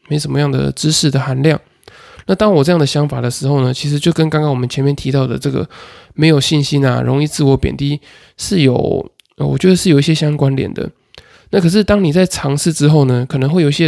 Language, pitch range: Chinese, 135-165 Hz